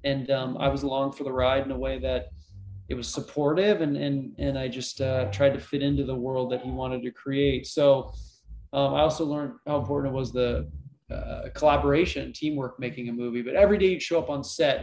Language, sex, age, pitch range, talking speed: English, male, 20-39, 130-160 Hz, 225 wpm